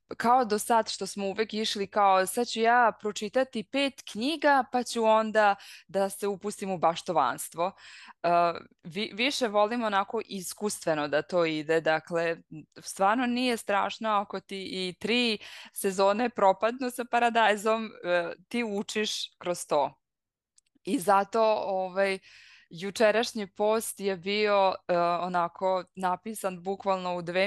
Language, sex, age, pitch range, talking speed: Croatian, female, 20-39, 180-215 Hz, 125 wpm